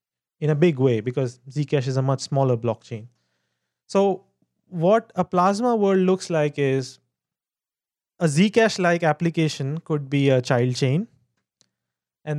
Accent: Indian